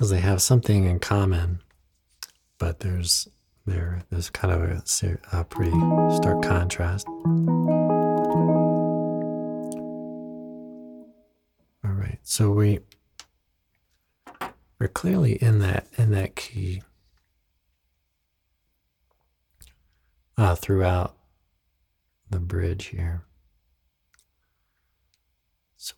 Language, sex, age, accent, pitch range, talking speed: English, male, 50-69, American, 70-95 Hz, 75 wpm